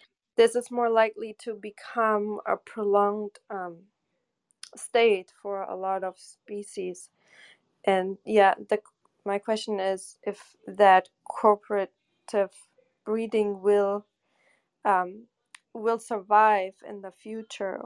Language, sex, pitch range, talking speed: English, female, 195-225 Hz, 110 wpm